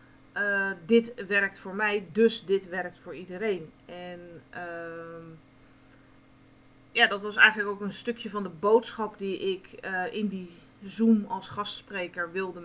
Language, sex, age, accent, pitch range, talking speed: Dutch, female, 30-49, Dutch, 175-230 Hz, 145 wpm